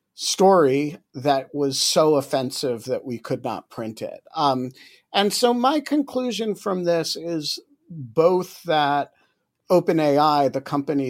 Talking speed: 130 wpm